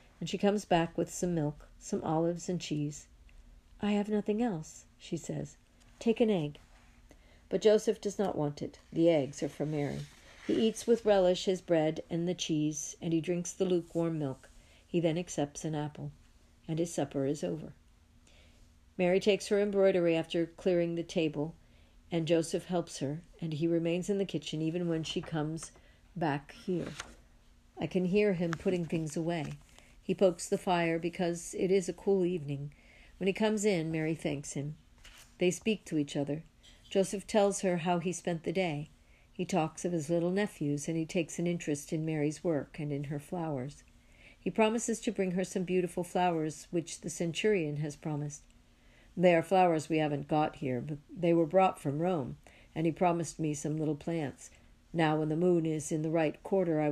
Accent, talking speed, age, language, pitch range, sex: American, 190 wpm, 50-69, English, 150-185 Hz, female